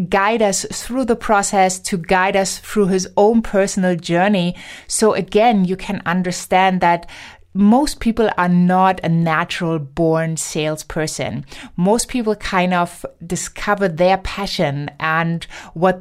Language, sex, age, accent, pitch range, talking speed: English, female, 20-39, German, 170-205 Hz, 135 wpm